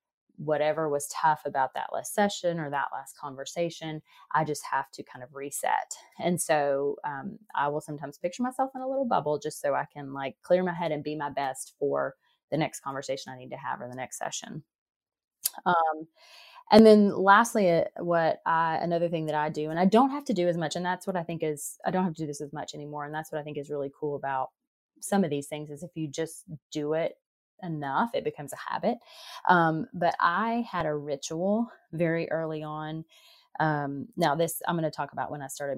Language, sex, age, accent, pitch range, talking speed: English, female, 30-49, American, 145-180 Hz, 225 wpm